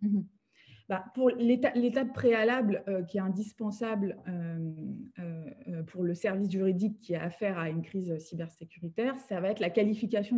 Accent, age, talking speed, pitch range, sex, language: French, 20-39, 160 wpm, 180-225 Hz, female, English